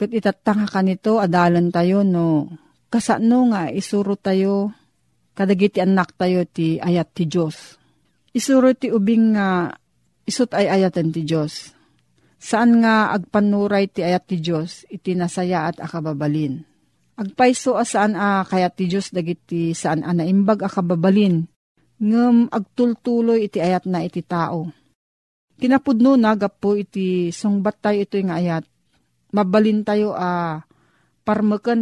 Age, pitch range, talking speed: 40-59, 175-220 Hz, 140 wpm